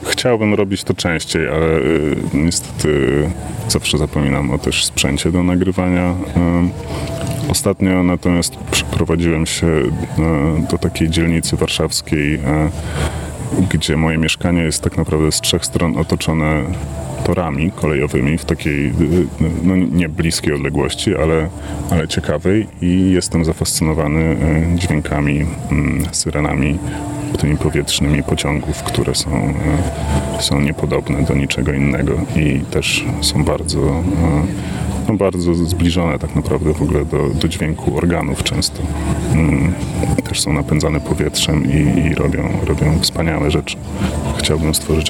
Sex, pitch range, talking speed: male, 75-90 Hz, 110 wpm